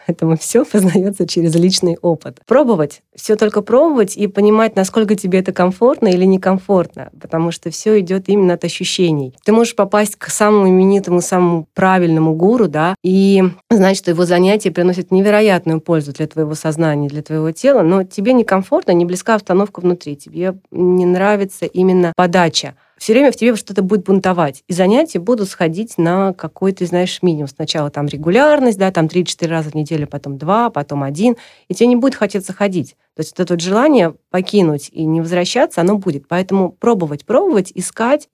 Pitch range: 170-205 Hz